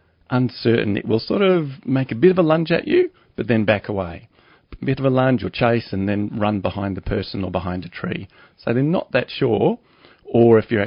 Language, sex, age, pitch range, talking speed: English, male, 40-59, 95-130 Hz, 230 wpm